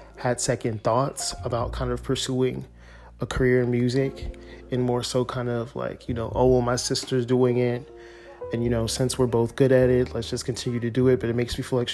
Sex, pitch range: male, 115-130 Hz